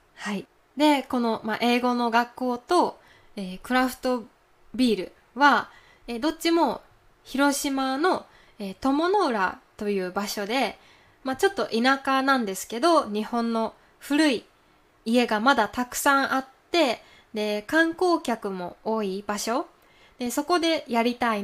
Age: 20-39